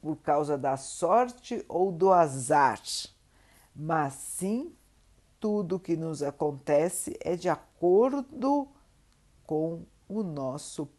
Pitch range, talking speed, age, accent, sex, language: 145-195 Hz, 105 wpm, 60-79, Brazilian, female, Portuguese